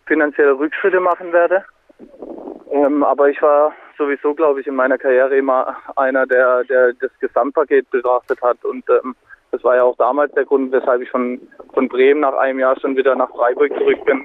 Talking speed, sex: 190 wpm, male